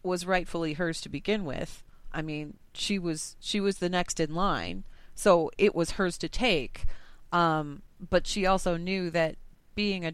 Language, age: English, 30-49